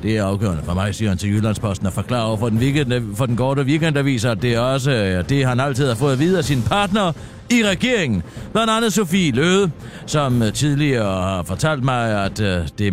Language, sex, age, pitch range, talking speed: Danish, male, 60-79, 110-170 Hz, 210 wpm